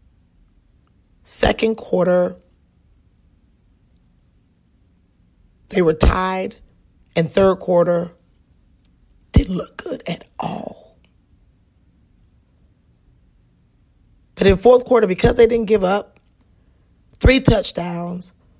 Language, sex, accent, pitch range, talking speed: English, female, American, 155-210 Hz, 75 wpm